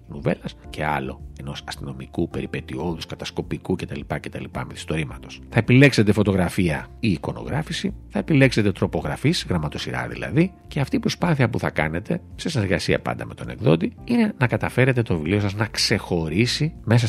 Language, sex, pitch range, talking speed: Greek, male, 75-115 Hz, 150 wpm